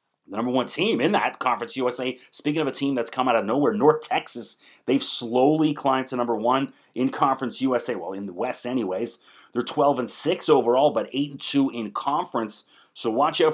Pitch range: 115-145 Hz